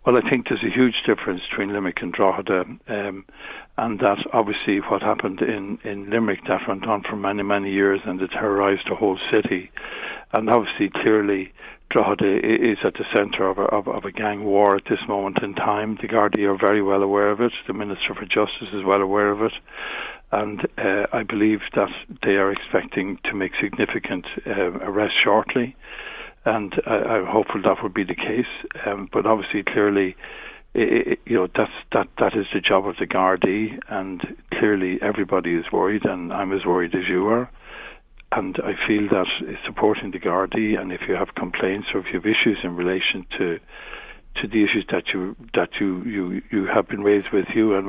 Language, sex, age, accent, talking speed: English, male, 60-79, Irish, 195 wpm